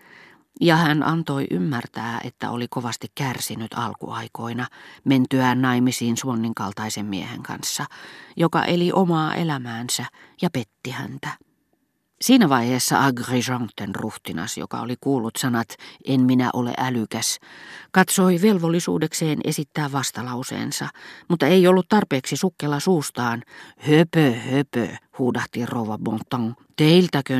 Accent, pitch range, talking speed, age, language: native, 120-160 Hz, 110 wpm, 40-59, Finnish